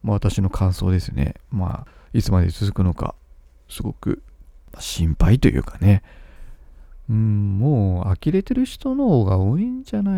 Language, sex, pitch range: Japanese, male, 95-160 Hz